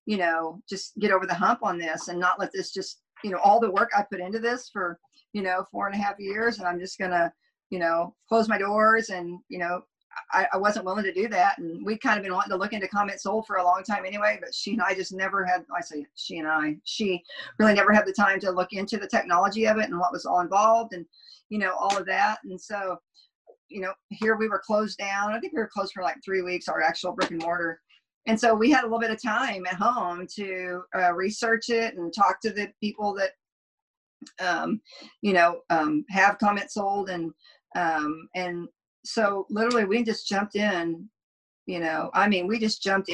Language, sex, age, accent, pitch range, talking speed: English, female, 50-69, American, 175-215 Hz, 235 wpm